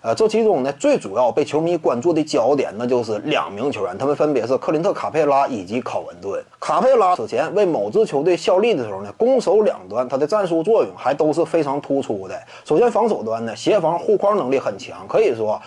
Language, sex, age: Chinese, male, 30-49